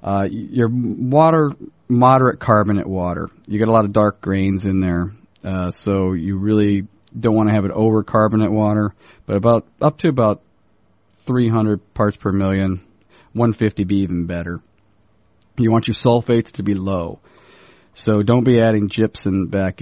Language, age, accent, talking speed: English, 40-59, American, 160 wpm